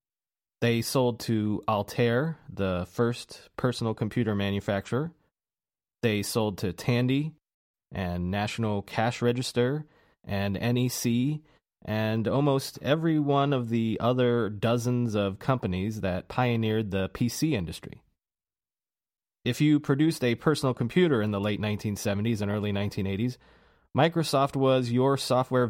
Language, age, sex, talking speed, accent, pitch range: English, 30-49, male, 120 wpm, American, 110-140 Hz